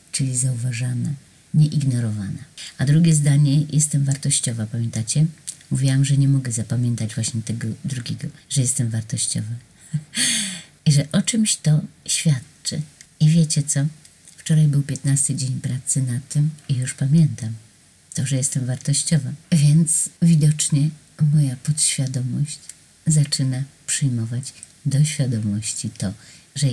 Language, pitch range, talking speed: Polish, 125-155 Hz, 120 wpm